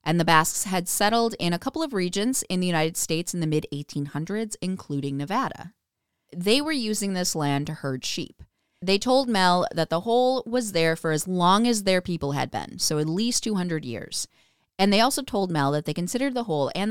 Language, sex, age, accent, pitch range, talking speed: English, female, 30-49, American, 145-215 Hz, 210 wpm